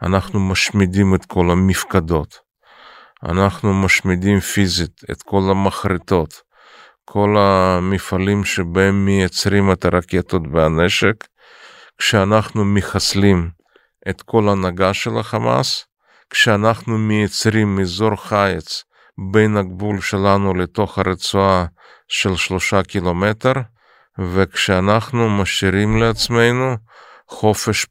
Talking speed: 90 wpm